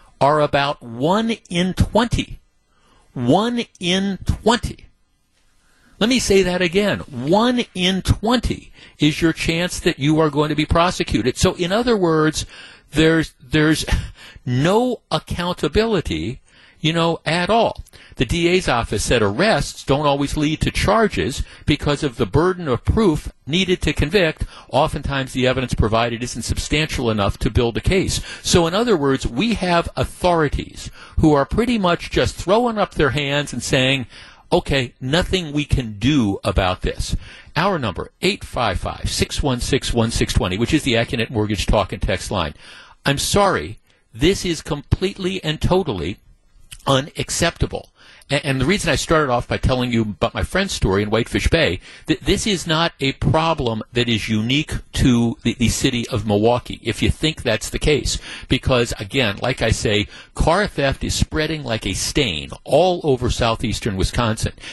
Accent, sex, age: American, male, 60-79